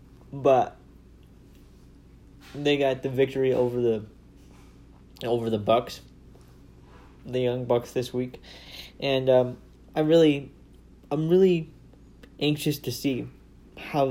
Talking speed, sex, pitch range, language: 105 wpm, male, 115-140 Hz, English